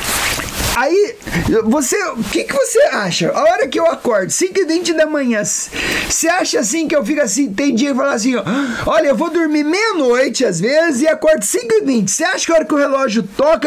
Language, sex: English, male